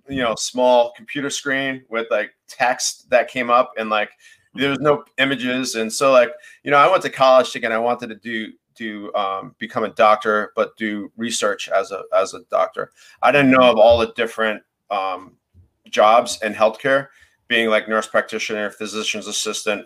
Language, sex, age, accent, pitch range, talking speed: English, male, 30-49, American, 110-130 Hz, 180 wpm